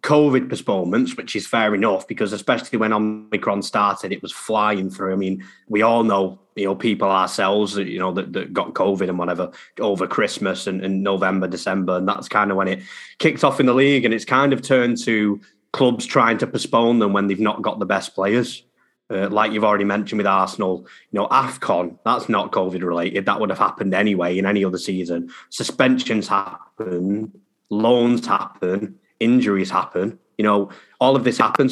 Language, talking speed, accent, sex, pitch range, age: English, 195 wpm, British, male, 95-115 Hz, 20-39